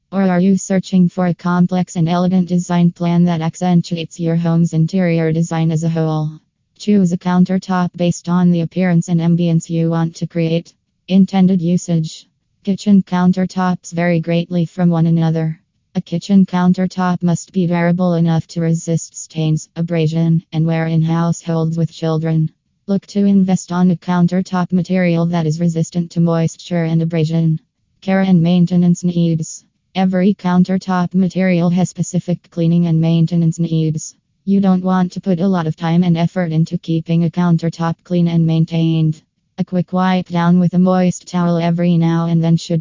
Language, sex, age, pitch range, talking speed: English, female, 20-39, 165-180 Hz, 165 wpm